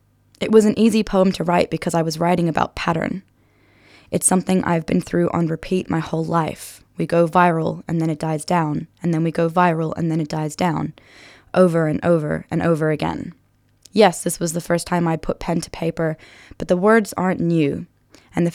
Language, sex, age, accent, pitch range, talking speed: English, female, 10-29, American, 160-185 Hz, 210 wpm